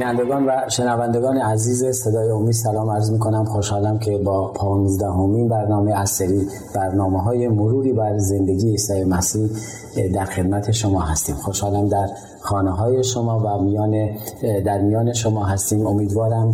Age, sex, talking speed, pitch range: 30-49, male, 140 wpm, 100-110 Hz